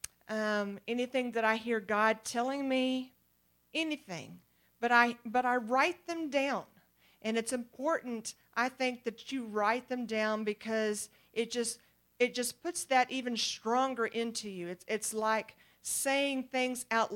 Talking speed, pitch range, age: 150 wpm, 195-245 Hz, 40-59